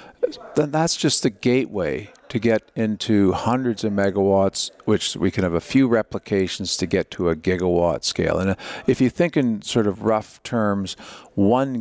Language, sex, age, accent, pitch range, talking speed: English, male, 50-69, American, 95-120 Hz, 175 wpm